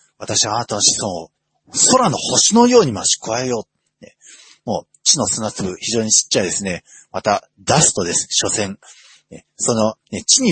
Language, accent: Japanese, native